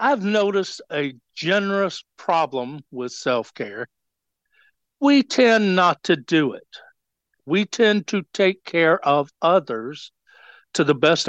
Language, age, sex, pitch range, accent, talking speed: English, 60-79, male, 150-210 Hz, American, 120 wpm